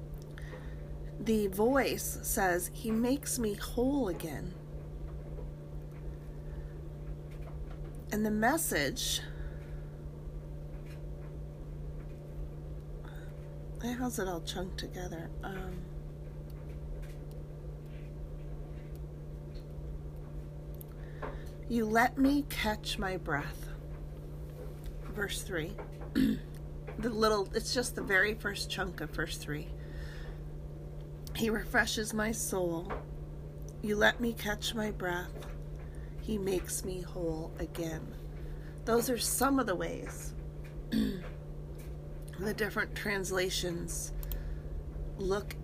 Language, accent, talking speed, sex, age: English, American, 80 wpm, female, 40-59